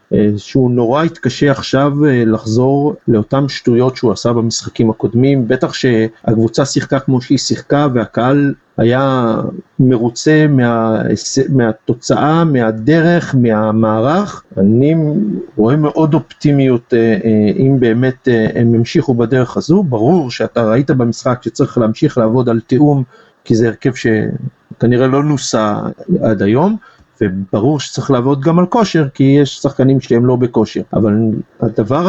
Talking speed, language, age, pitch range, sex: 120 wpm, Hebrew, 50-69, 120-150 Hz, male